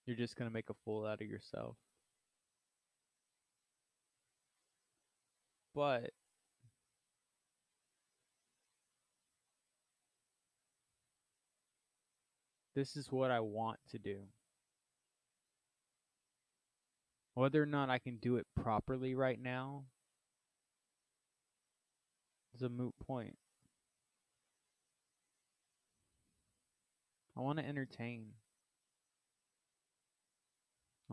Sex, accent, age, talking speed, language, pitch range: male, American, 20-39, 70 wpm, English, 115-125 Hz